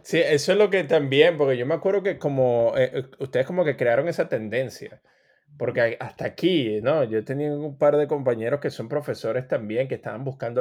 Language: English